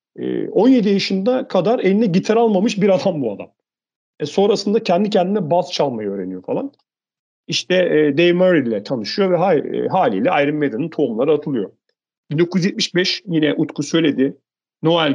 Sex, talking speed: male, 135 wpm